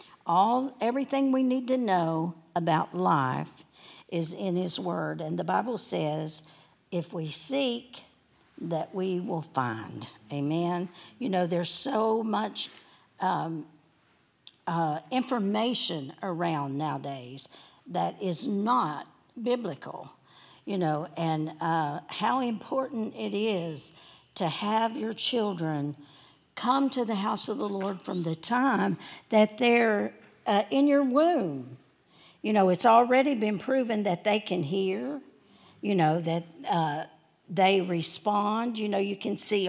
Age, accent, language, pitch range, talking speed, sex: 60-79, American, English, 165-240 Hz, 130 wpm, female